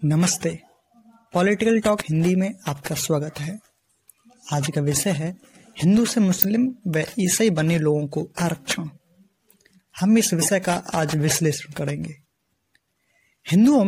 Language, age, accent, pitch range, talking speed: Hindi, 20-39, native, 160-220 Hz, 125 wpm